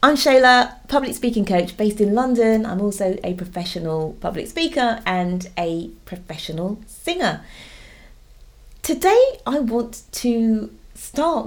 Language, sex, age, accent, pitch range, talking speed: English, female, 30-49, British, 175-240 Hz, 120 wpm